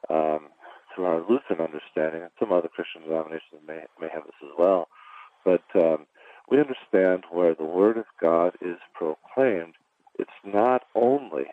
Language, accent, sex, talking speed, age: English, American, male, 155 wpm, 50-69